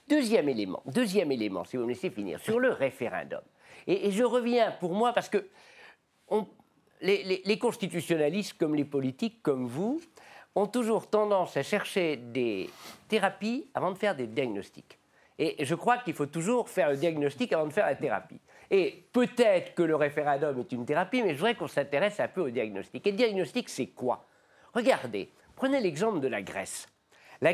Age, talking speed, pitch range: 50-69, 185 wpm, 140-235 Hz